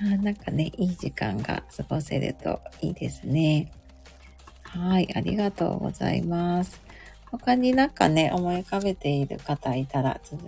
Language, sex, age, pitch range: Japanese, female, 30-49, 155-225 Hz